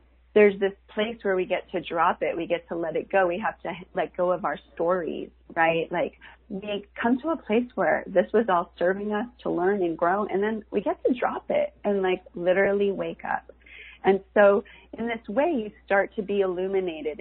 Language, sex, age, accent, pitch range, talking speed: English, female, 30-49, American, 180-230 Hz, 215 wpm